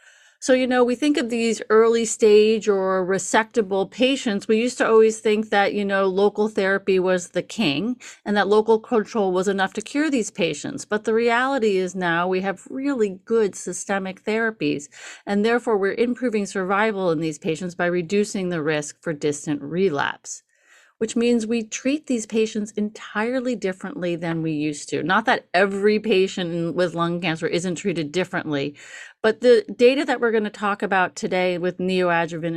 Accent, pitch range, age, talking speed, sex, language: American, 175-220 Hz, 30-49, 175 wpm, female, English